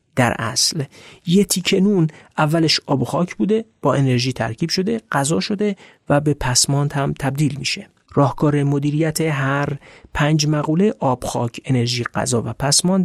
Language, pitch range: Persian, 135-165 Hz